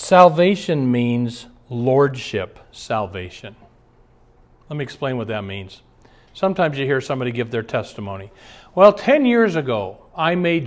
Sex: male